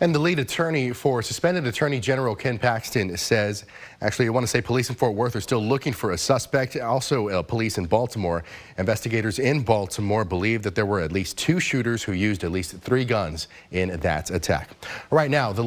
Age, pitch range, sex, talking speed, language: 30-49, 105-140 Hz, male, 205 wpm, English